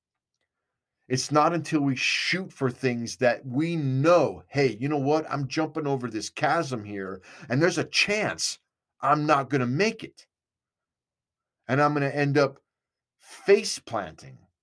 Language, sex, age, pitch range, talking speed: English, male, 50-69, 110-145 Hz, 150 wpm